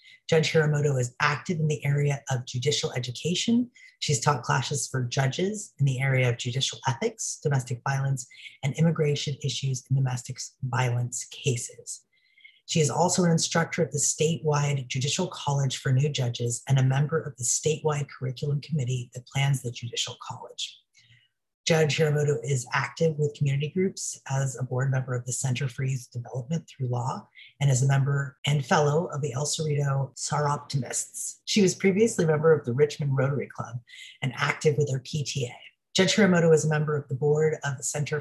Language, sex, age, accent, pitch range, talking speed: English, female, 30-49, American, 130-155 Hz, 175 wpm